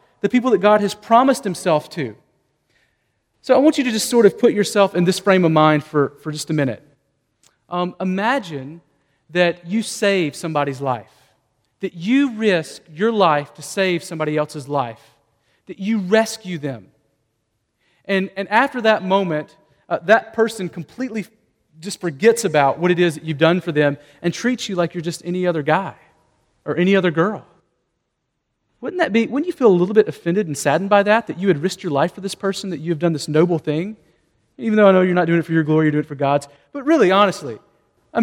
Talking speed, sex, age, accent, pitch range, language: 205 wpm, male, 40-59, American, 150-220 Hz, English